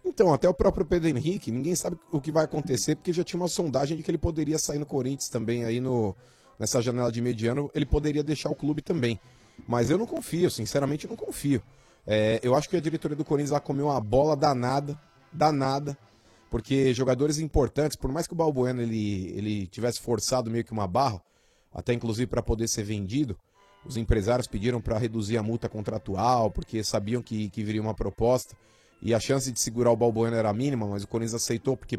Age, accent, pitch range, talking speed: 30-49, Brazilian, 115-150 Hz, 200 wpm